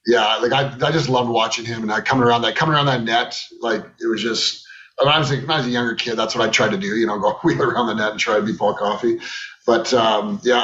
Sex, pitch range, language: male, 120-155 Hz, English